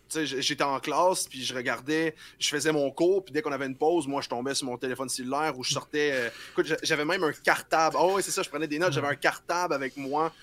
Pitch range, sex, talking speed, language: 130-155 Hz, male, 265 wpm, French